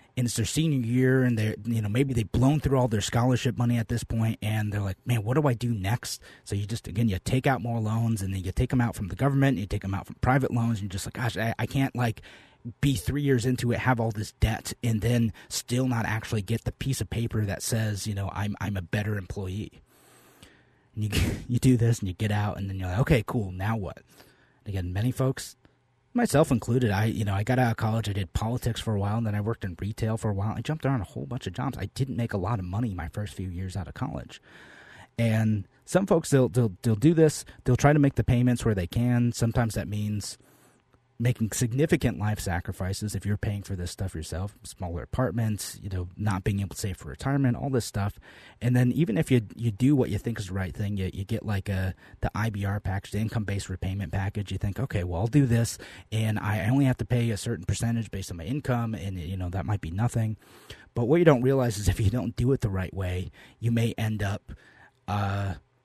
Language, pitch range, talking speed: English, 100-125 Hz, 250 wpm